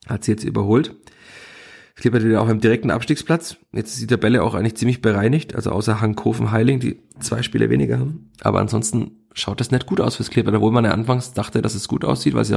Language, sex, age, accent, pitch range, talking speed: German, male, 30-49, German, 105-120 Hz, 225 wpm